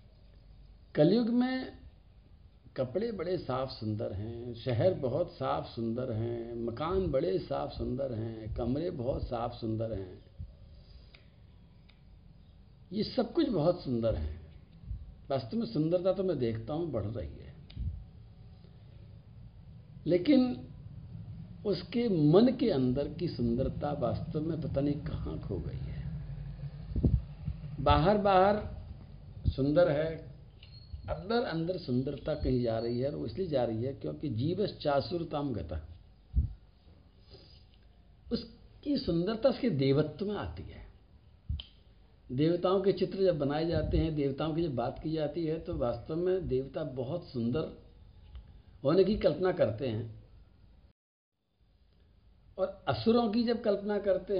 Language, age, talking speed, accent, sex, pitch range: Hindi, 60-79, 125 wpm, native, male, 110-170 Hz